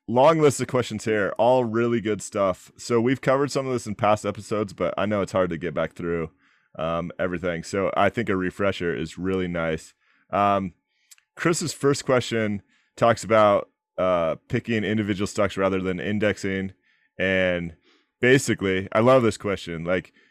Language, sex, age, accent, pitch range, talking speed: English, male, 30-49, American, 95-115 Hz, 170 wpm